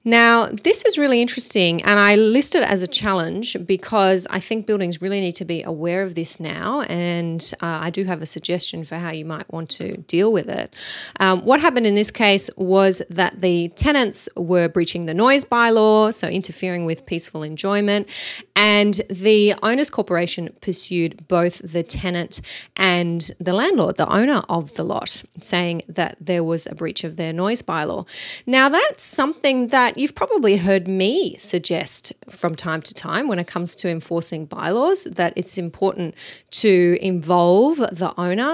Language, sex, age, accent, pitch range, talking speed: English, female, 30-49, Australian, 170-210 Hz, 175 wpm